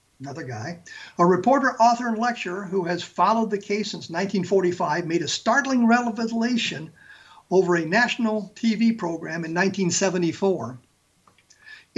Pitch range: 175-225 Hz